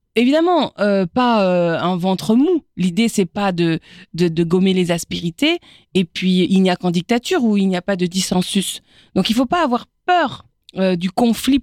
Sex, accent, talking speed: female, French, 205 wpm